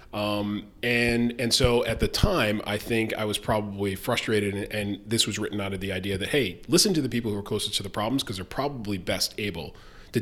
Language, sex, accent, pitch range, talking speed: English, male, American, 95-110 Hz, 235 wpm